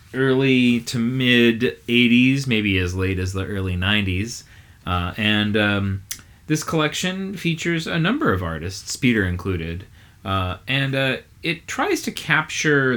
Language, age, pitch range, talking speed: English, 30-49, 95-130 Hz, 135 wpm